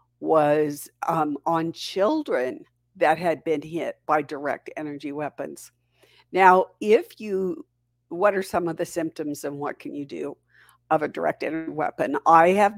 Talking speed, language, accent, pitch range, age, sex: 155 wpm, English, American, 160-205 Hz, 60-79, female